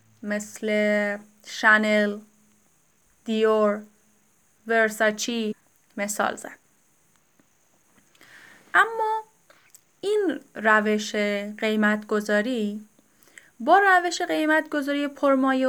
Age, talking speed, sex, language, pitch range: 10-29, 55 wpm, female, Persian, 220-315 Hz